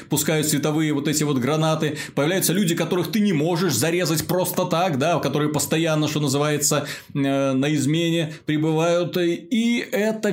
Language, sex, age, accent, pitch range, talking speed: Russian, male, 30-49, native, 130-165 Hz, 145 wpm